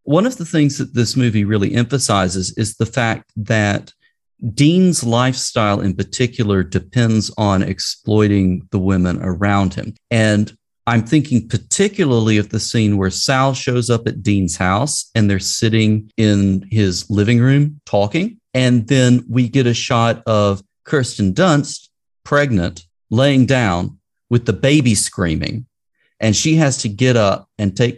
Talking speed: 150 wpm